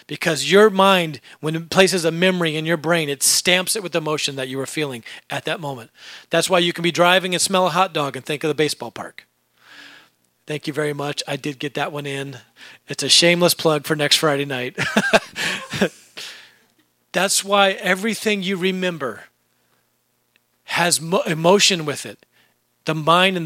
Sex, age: male, 40-59